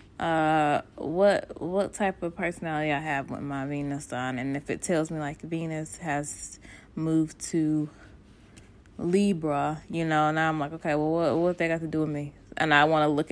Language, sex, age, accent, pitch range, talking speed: English, female, 20-39, American, 140-175 Hz, 195 wpm